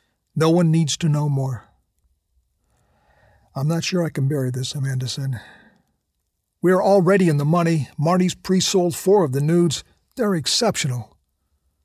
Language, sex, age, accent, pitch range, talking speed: English, male, 50-69, American, 125-160 Hz, 150 wpm